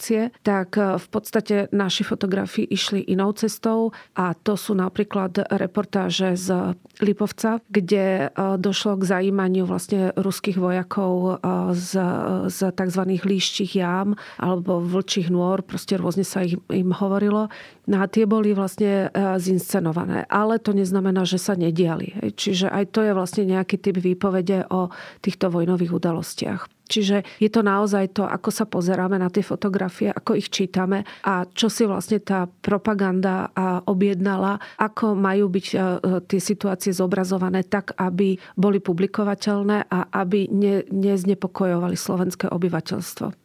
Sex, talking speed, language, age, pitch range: female, 130 wpm, Slovak, 40-59, 180-200 Hz